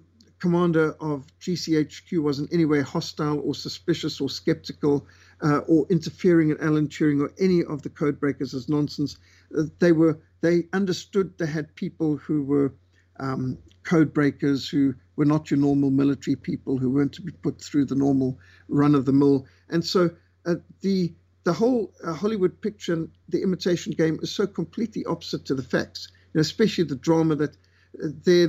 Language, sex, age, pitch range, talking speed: English, male, 50-69, 140-170 Hz, 180 wpm